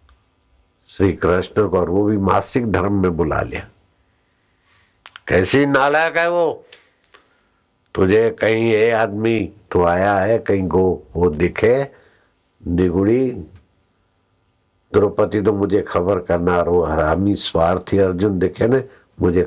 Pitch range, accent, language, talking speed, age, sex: 90-105 Hz, native, Hindi, 115 wpm, 60-79, male